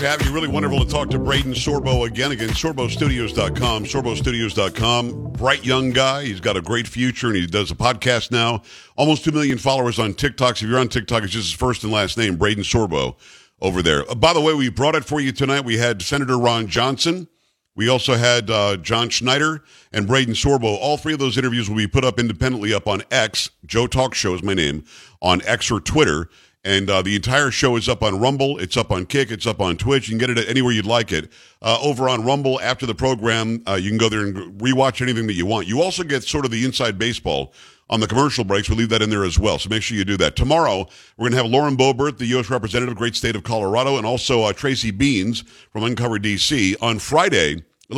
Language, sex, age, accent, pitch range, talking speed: English, male, 50-69, American, 110-130 Hz, 240 wpm